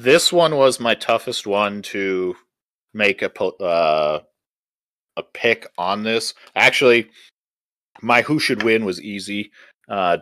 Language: English